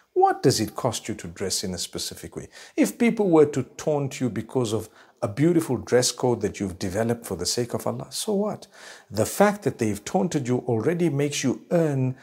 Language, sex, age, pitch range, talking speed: English, male, 50-69, 115-165 Hz, 210 wpm